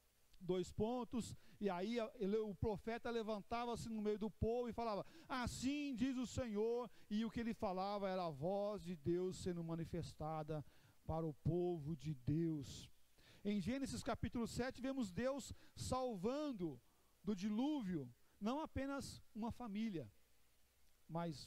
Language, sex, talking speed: Portuguese, male, 135 wpm